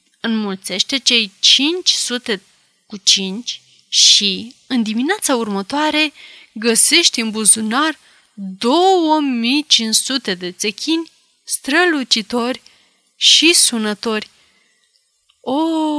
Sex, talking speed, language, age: female, 70 wpm, Romanian, 30-49